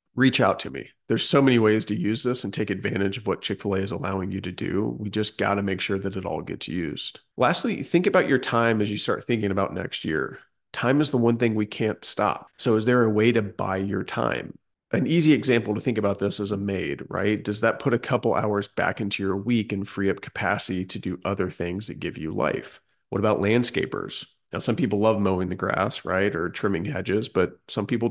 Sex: male